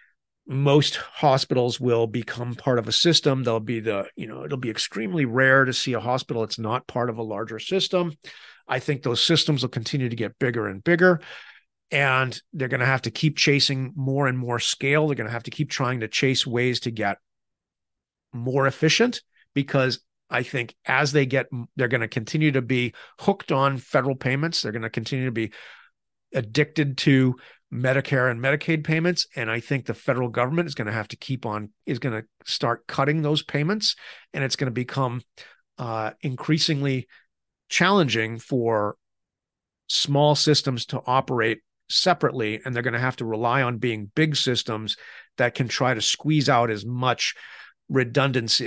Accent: American